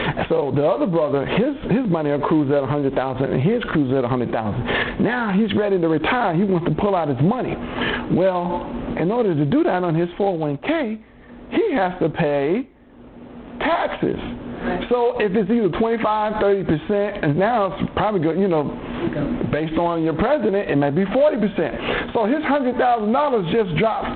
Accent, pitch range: American, 175-235 Hz